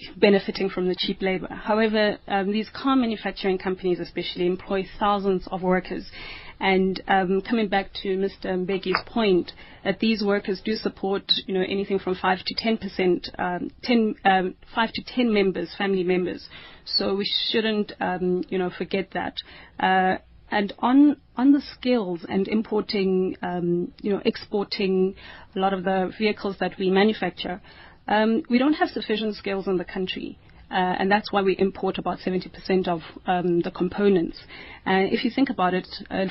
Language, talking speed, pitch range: English, 165 wpm, 185-215 Hz